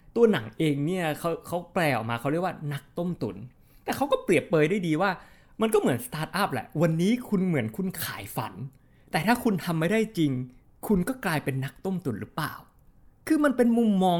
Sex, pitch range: male, 130-200 Hz